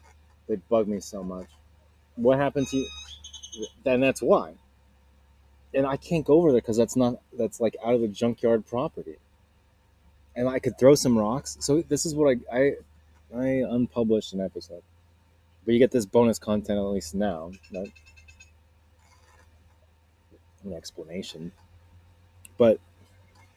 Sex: male